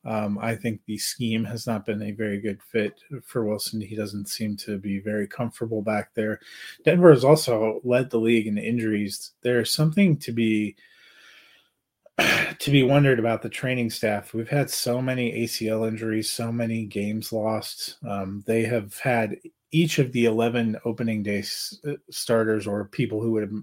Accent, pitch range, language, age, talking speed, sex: American, 110-125 Hz, English, 30-49, 170 wpm, male